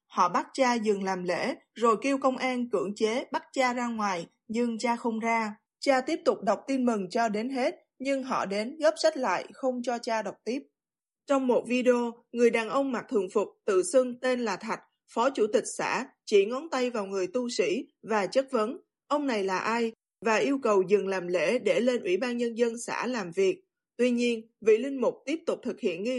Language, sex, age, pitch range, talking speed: Vietnamese, female, 20-39, 220-275 Hz, 220 wpm